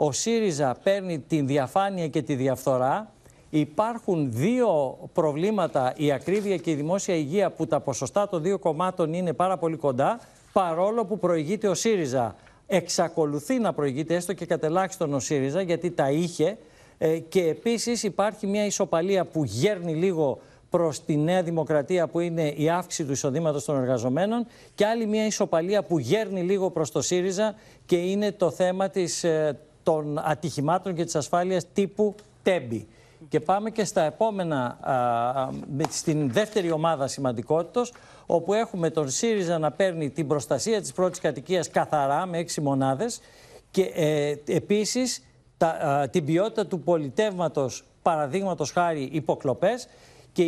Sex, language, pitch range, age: male, Greek, 150-195 Hz, 50-69